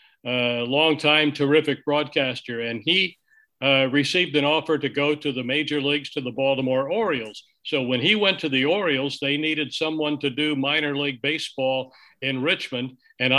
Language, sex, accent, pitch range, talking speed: French, male, American, 130-150 Hz, 170 wpm